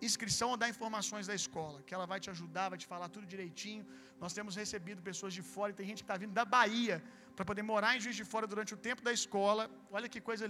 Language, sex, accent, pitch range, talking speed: Gujarati, male, Brazilian, 200-240 Hz, 255 wpm